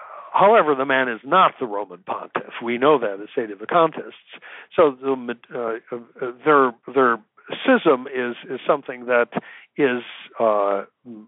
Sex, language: male, English